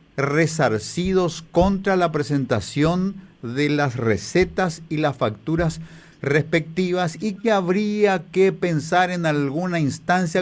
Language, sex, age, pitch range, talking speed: Spanish, male, 50-69, 145-185 Hz, 110 wpm